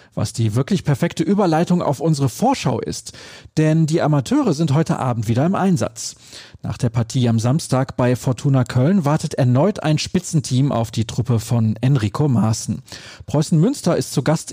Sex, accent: male, German